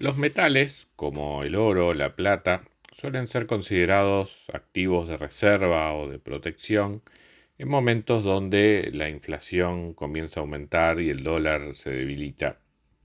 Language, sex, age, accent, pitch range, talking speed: Spanish, male, 40-59, Argentinian, 75-100 Hz, 135 wpm